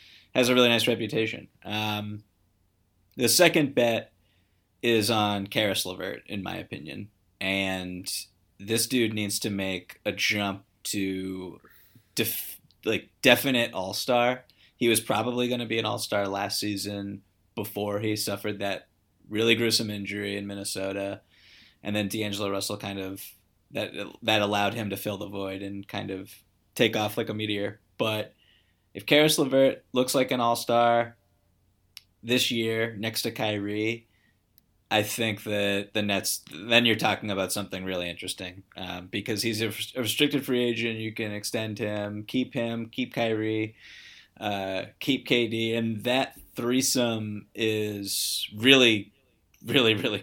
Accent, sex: American, male